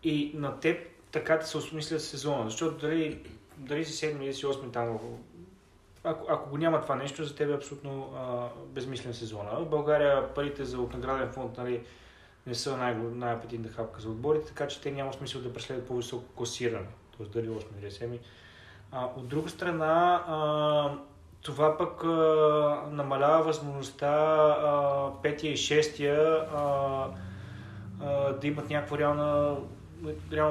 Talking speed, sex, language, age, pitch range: 140 wpm, male, Bulgarian, 20-39, 120-150 Hz